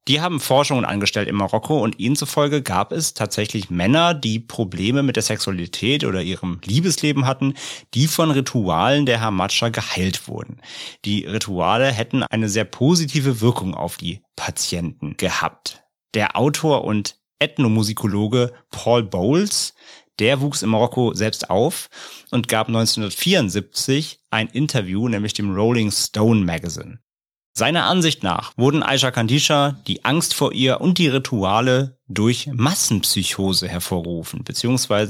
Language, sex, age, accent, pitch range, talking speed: German, male, 30-49, German, 100-130 Hz, 135 wpm